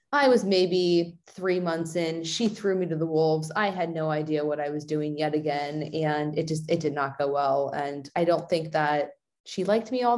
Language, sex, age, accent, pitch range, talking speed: English, female, 20-39, American, 155-225 Hz, 230 wpm